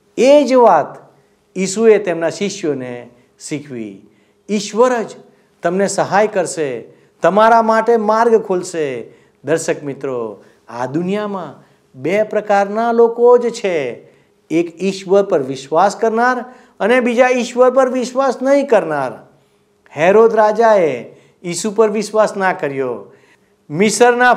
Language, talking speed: Gujarati, 90 wpm